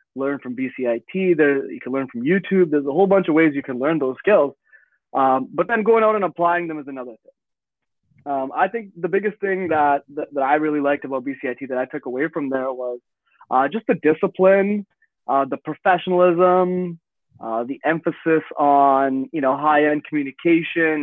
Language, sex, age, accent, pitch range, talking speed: English, male, 20-39, American, 135-180 Hz, 190 wpm